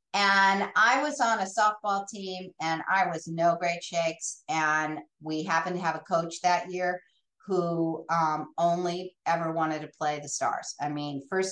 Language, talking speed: English, 175 wpm